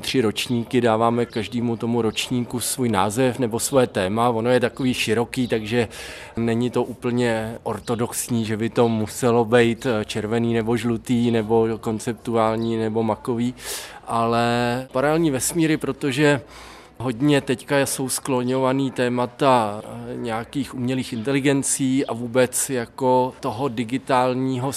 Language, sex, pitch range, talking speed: Czech, male, 120-135 Hz, 120 wpm